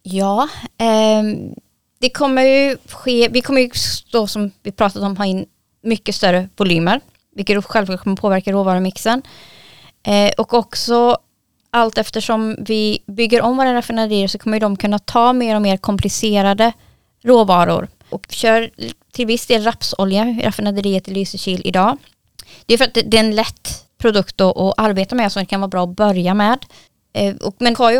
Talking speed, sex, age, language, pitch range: 175 wpm, female, 20-39, English, 195-230 Hz